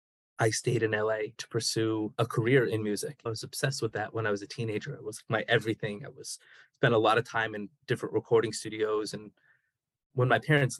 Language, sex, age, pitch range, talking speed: English, male, 20-39, 110-145 Hz, 215 wpm